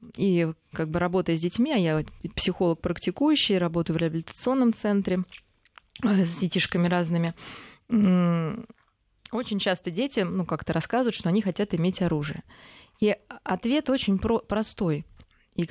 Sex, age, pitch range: female, 20-39, 165-210 Hz